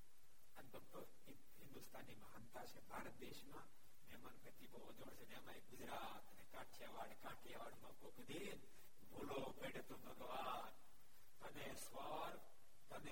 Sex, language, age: male, Gujarati, 60-79